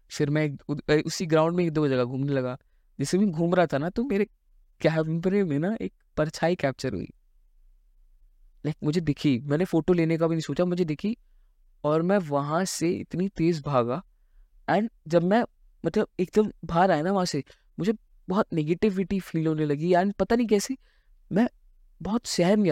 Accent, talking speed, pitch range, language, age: native, 185 wpm, 140-190 Hz, Hindi, 20-39